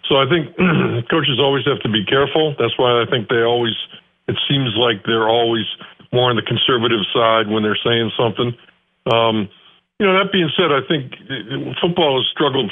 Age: 60-79